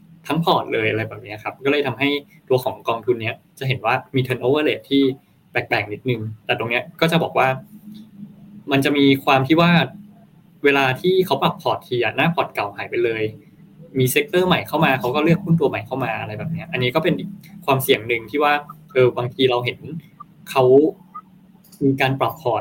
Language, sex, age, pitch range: Thai, male, 20-39, 125-170 Hz